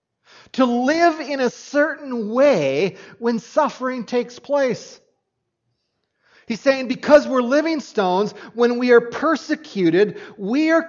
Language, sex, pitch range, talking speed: English, male, 195-270 Hz, 120 wpm